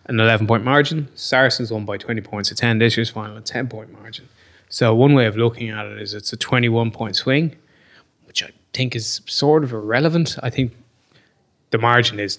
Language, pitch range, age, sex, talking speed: English, 110-125 Hz, 20-39, male, 195 wpm